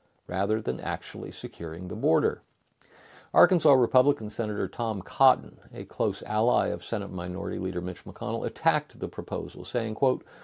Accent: American